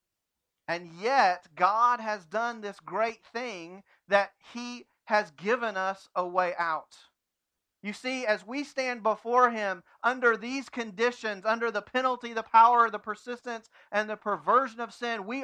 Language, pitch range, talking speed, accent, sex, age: English, 195-255 Hz, 150 wpm, American, male, 40-59